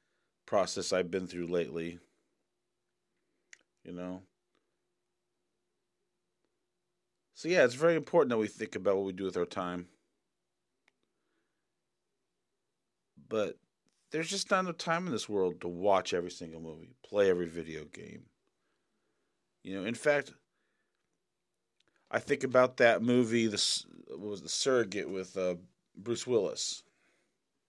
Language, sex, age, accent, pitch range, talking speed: English, male, 40-59, American, 90-115 Hz, 120 wpm